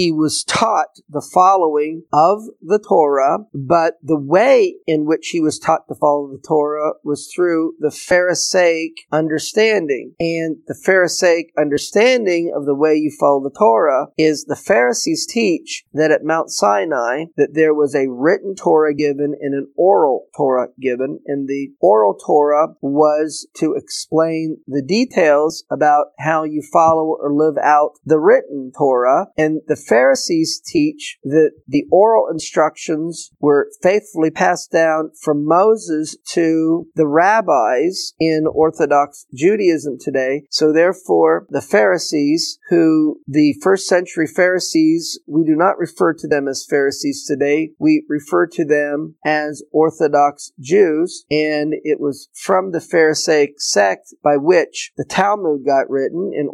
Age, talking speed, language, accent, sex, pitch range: 40-59, 145 wpm, English, American, male, 145-180 Hz